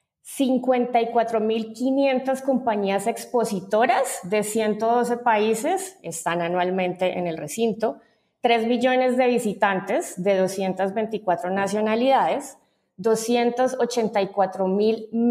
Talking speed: 70 wpm